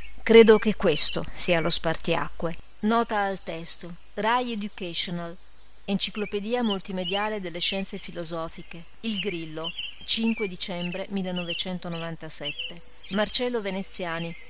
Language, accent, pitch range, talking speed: Italian, native, 170-205 Hz, 95 wpm